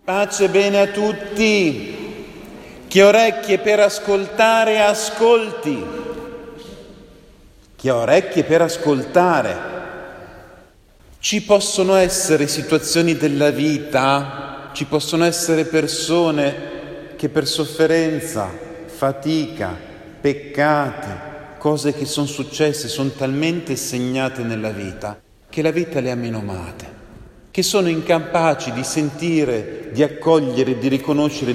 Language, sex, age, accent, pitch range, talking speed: Italian, male, 40-59, native, 130-170 Hz, 100 wpm